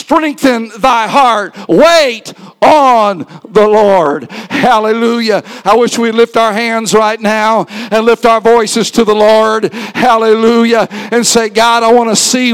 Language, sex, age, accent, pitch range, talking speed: English, male, 50-69, American, 225-275 Hz, 150 wpm